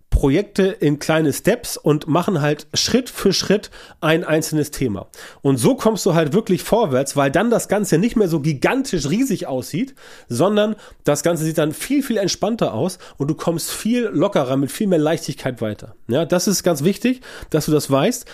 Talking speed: 190 wpm